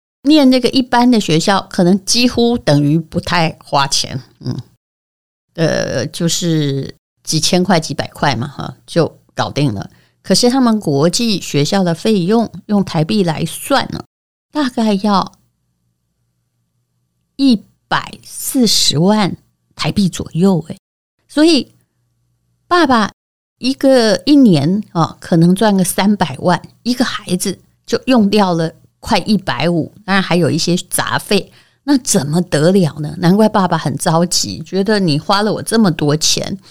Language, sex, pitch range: Chinese, female, 155-215 Hz